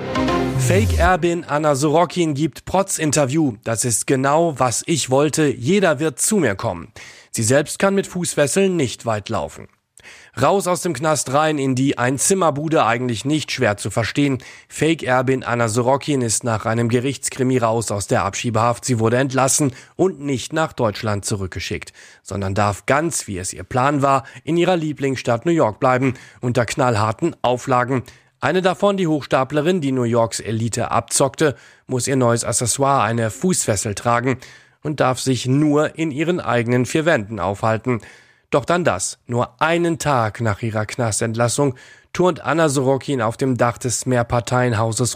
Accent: German